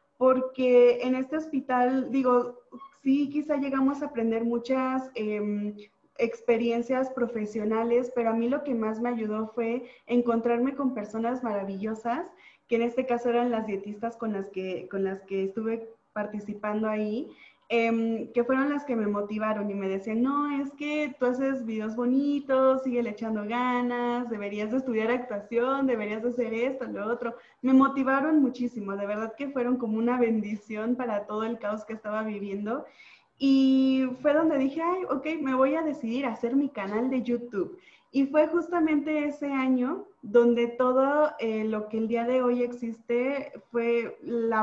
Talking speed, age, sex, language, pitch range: 165 wpm, 20-39, female, Spanish, 215-260 Hz